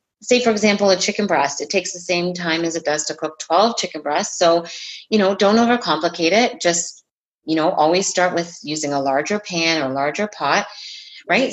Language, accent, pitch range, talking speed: English, American, 160-215 Hz, 205 wpm